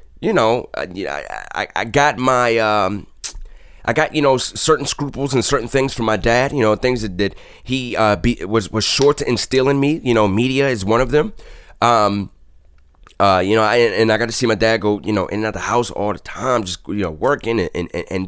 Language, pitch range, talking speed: English, 100-130 Hz, 235 wpm